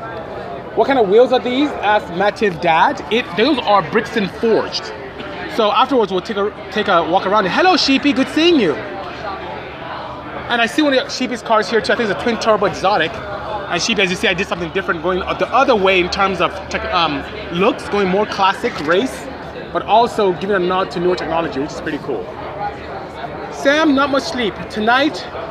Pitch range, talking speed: 185-250 Hz, 200 wpm